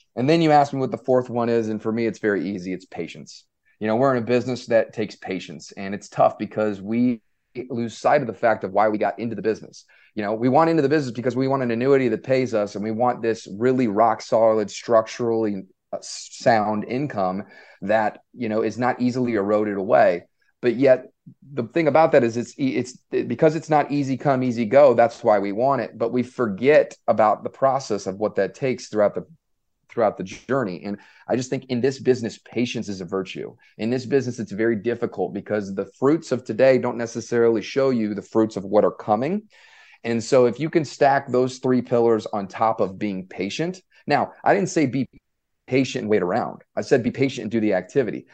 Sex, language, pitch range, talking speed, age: male, English, 105-130 Hz, 220 wpm, 30-49